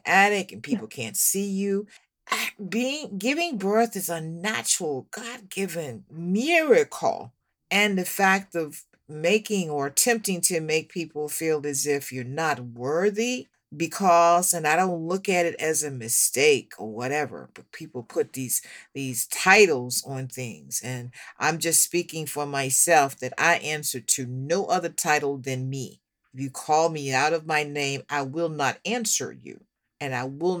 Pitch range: 140-185 Hz